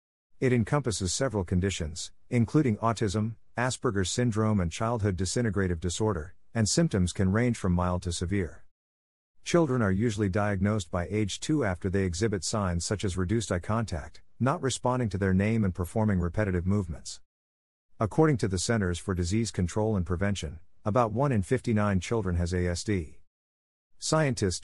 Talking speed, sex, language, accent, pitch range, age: 150 wpm, male, English, American, 90-115 Hz, 50-69